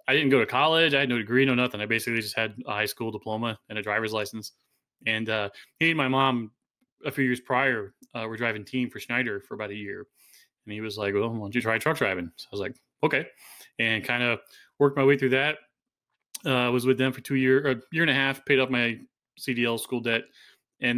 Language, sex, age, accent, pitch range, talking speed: English, male, 20-39, American, 110-125 Hz, 250 wpm